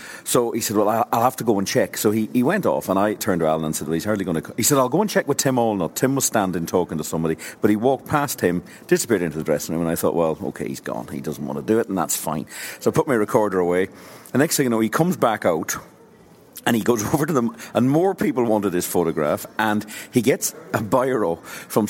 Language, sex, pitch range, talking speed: English, male, 90-120 Hz, 275 wpm